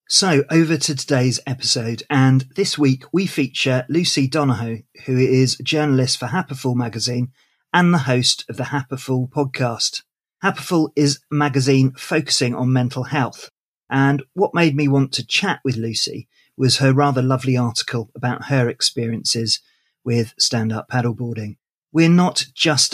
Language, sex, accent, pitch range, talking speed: English, male, British, 125-145 Hz, 150 wpm